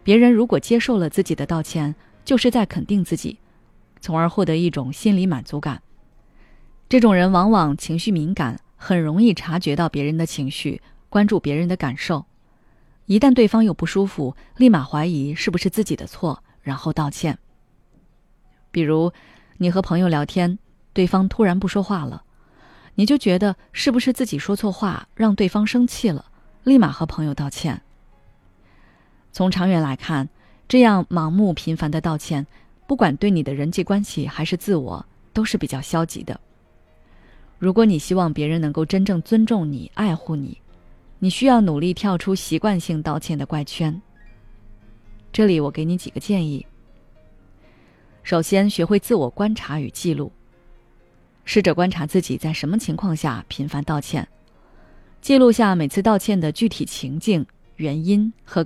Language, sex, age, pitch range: Chinese, female, 20-39, 150-205 Hz